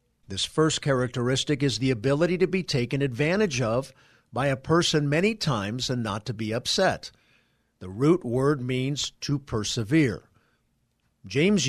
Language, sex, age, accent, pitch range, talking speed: English, male, 50-69, American, 120-160 Hz, 145 wpm